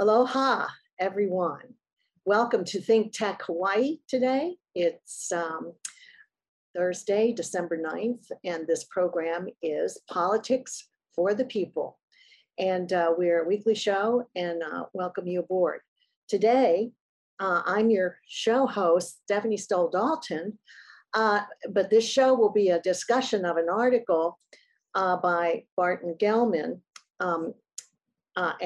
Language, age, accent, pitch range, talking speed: English, 50-69, American, 175-235 Hz, 120 wpm